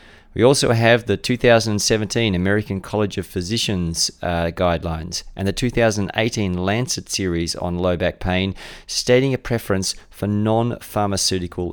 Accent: Australian